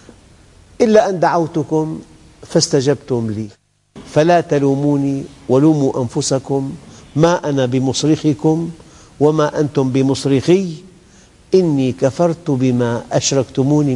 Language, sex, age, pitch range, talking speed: English, male, 50-69, 110-140 Hz, 80 wpm